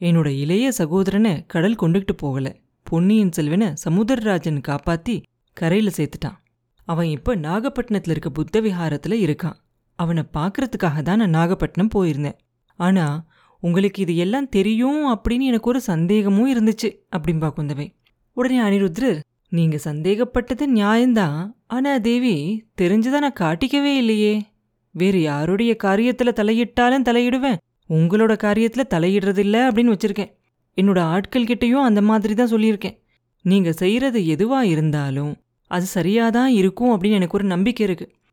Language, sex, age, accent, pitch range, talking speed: Tamil, female, 30-49, native, 165-225 Hz, 115 wpm